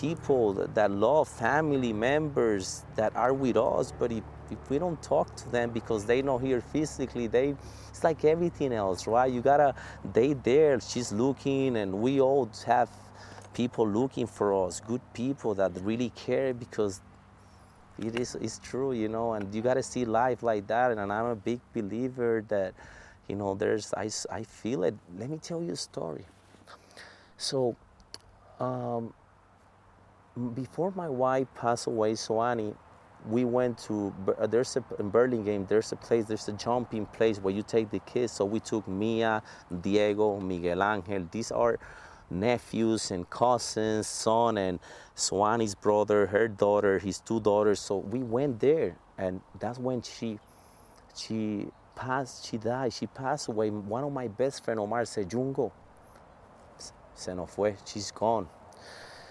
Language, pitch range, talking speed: English, 100-125 Hz, 160 wpm